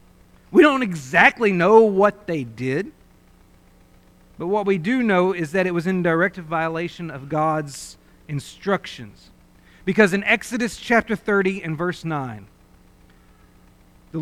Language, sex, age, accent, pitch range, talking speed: English, male, 40-59, American, 150-210 Hz, 130 wpm